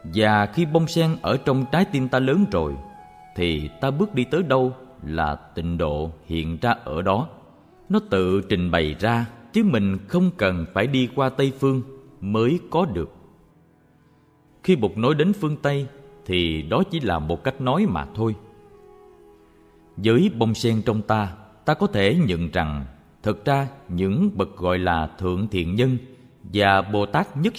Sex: male